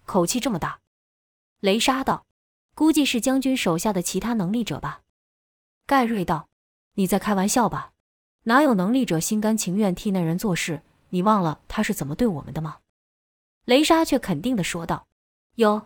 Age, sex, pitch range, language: 20-39, female, 170-240 Hz, Chinese